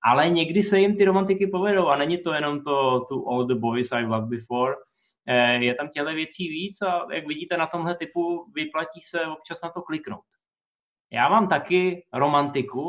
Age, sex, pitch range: 20-39, male, 130-170 Hz